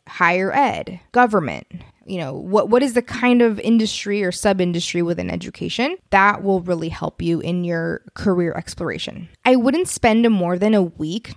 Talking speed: 170 wpm